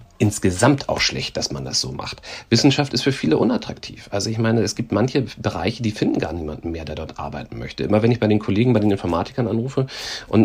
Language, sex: German, male